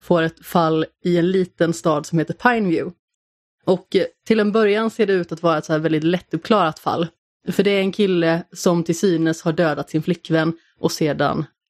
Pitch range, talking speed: 160-190 Hz, 205 wpm